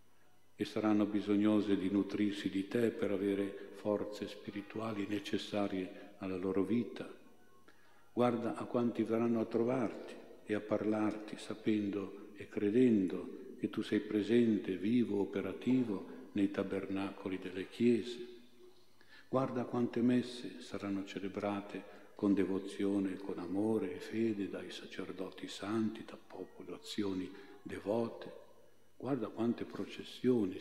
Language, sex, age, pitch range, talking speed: Italian, male, 50-69, 100-110 Hz, 110 wpm